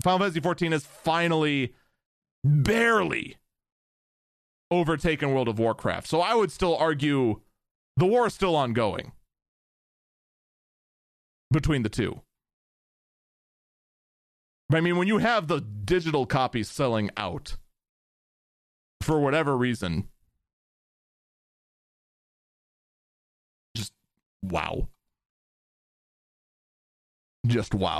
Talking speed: 85 wpm